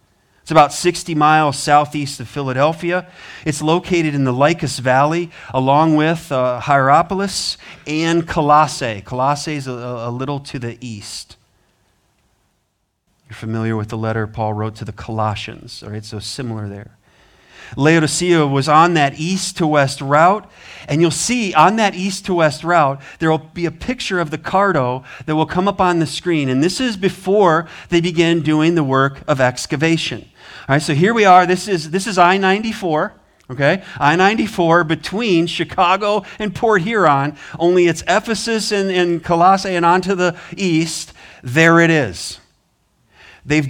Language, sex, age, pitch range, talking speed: English, male, 40-59, 130-175 Hz, 155 wpm